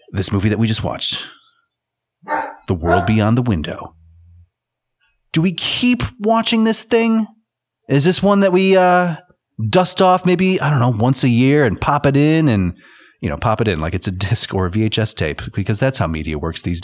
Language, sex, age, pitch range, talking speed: English, male, 30-49, 105-155 Hz, 200 wpm